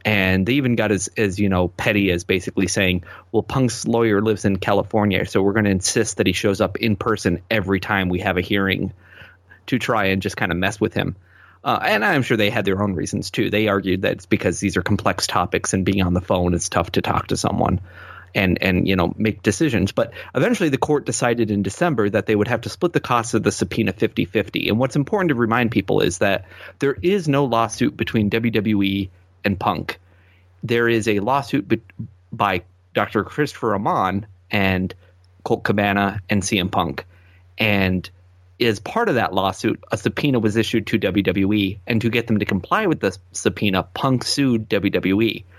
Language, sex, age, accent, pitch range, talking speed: English, male, 30-49, American, 95-115 Hz, 205 wpm